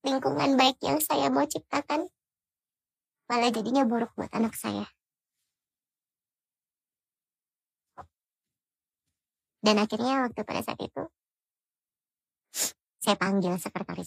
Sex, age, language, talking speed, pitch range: male, 40-59, Indonesian, 90 wpm, 170-215 Hz